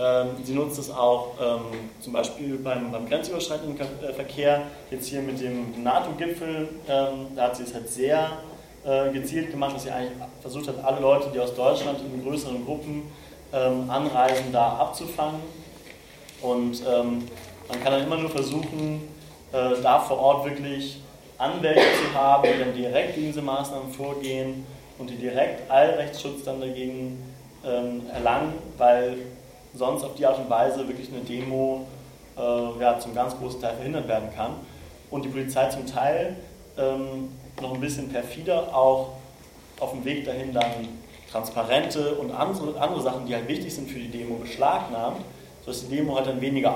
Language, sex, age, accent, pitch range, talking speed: German, male, 30-49, German, 125-140 Hz, 160 wpm